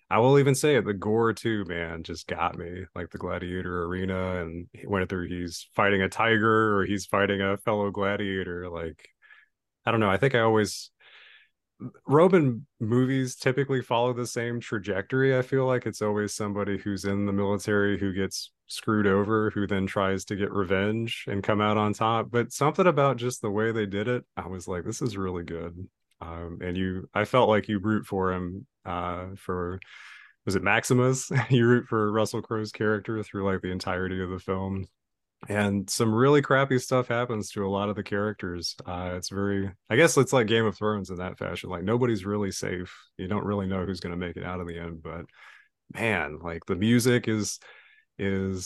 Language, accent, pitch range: English, American, 95-115 Hz